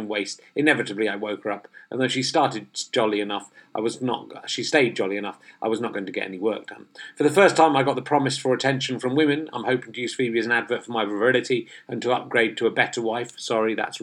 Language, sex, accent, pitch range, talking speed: English, male, British, 110-140 Hz, 255 wpm